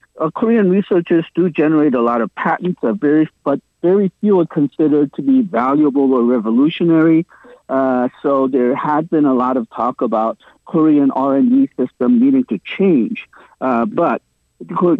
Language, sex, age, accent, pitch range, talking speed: English, male, 50-69, American, 130-185 Hz, 150 wpm